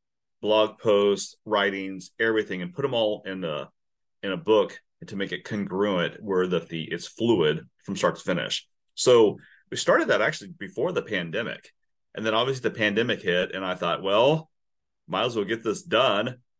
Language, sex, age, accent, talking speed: English, male, 30-49, American, 180 wpm